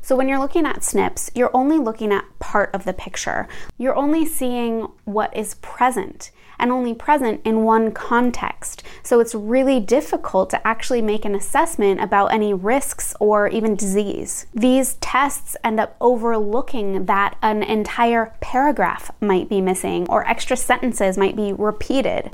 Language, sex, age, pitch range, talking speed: English, female, 20-39, 200-255 Hz, 160 wpm